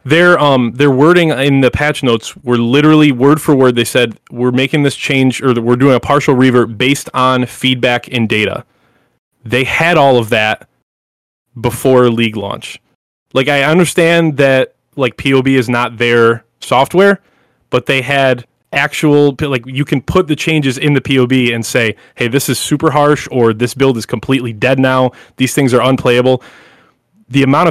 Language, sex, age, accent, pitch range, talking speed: English, male, 20-39, American, 120-140 Hz, 180 wpm